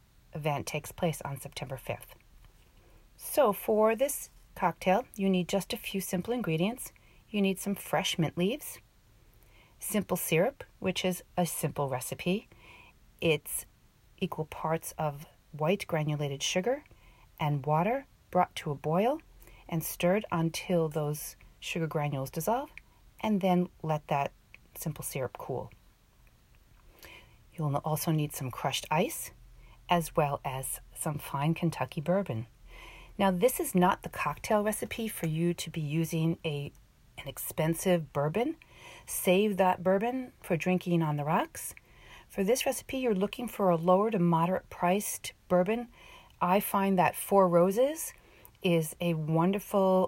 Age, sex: 40-59, female